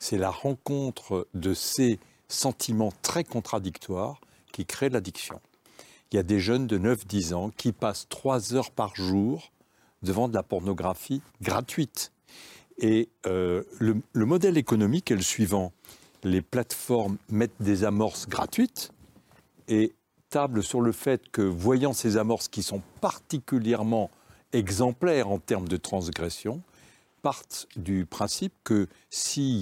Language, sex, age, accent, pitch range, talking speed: French, male, 60-79, French, 100-130 Hz, 135 wpm